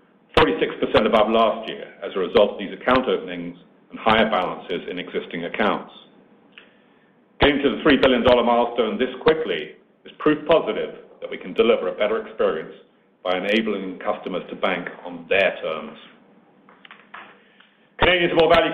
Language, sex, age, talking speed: English, male, 50-69, 145 wpm